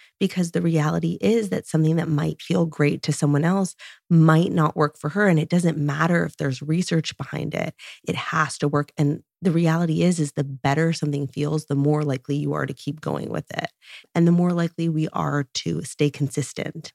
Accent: American